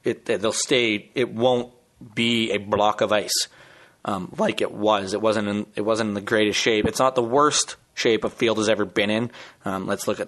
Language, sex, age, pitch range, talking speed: English, male, 20-39, 105-120 Hz, 220 wpm